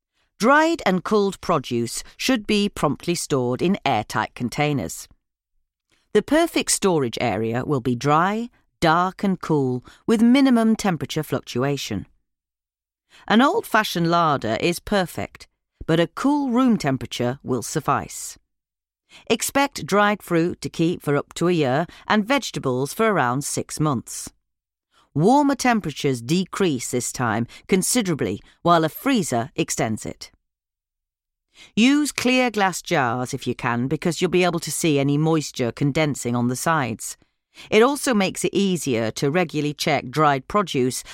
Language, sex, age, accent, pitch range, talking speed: English, female, 40-59, British, 130-200 Hz, 135 wpm